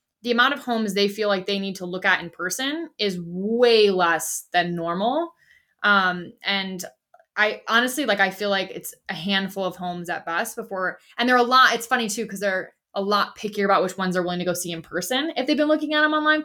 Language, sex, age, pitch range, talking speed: English, female, 20-39, 185-245 Hz, 235 wpm